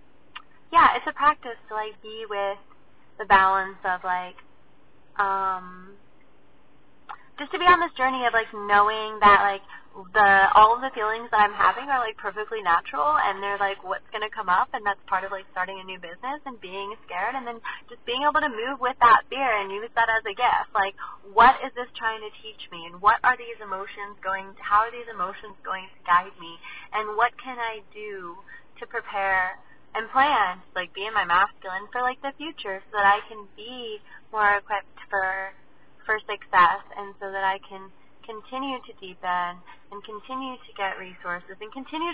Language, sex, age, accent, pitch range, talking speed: English, female, 20-39, American, 195-240 Hz, 190 wpm